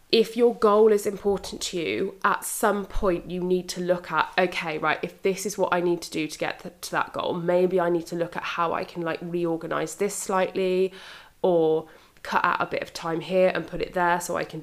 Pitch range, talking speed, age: 170-190 Hz, 240 wpm, 20-39